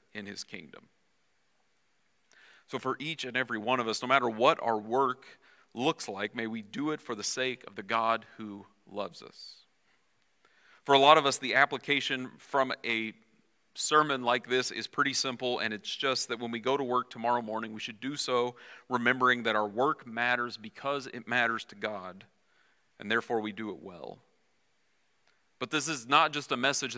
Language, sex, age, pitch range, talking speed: English, male, 40-59, 115-140 Hz, 185 wpm